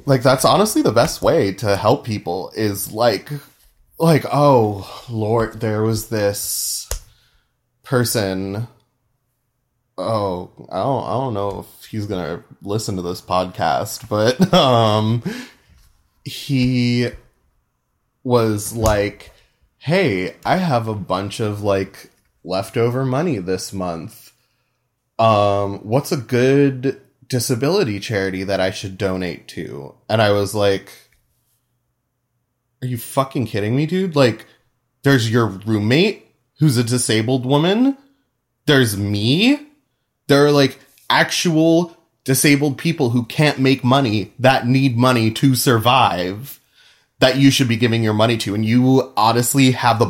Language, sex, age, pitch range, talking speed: English, male, 20-39, 105-135 Hz, 130 wpm